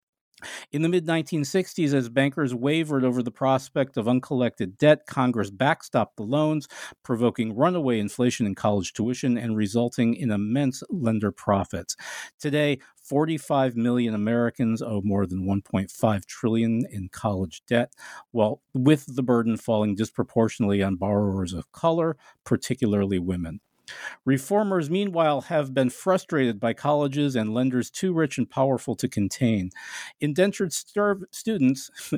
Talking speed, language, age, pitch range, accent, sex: 130 wpm, English, 50-69, 115-155 Hz, American, male